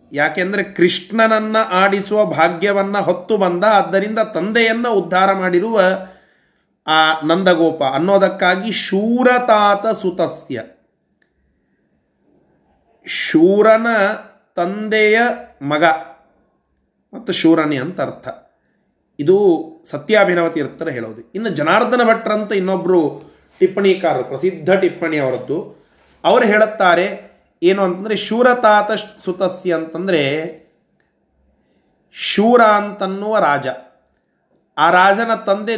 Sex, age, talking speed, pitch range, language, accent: male, 30-49, 75 wpm, 165-220 Hz, Kannada, native